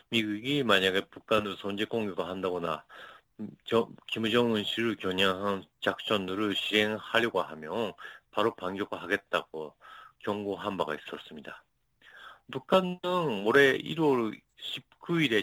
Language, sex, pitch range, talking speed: English, male, 105-140 Hz, 90 wpm